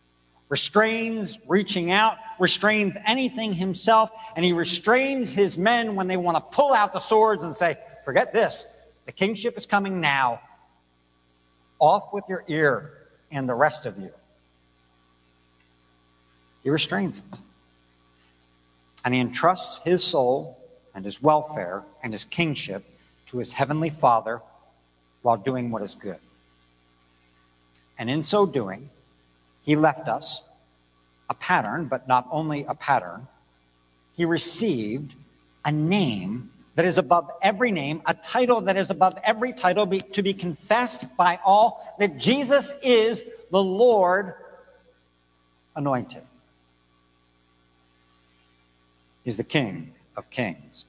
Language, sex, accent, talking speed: English, male, American, 125 wpm